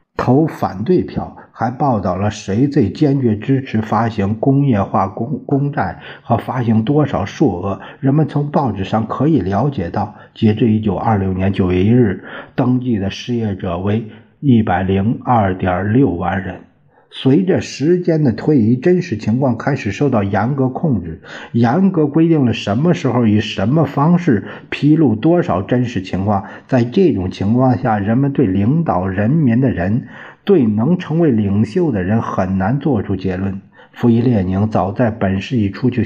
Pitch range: 100-140 Hz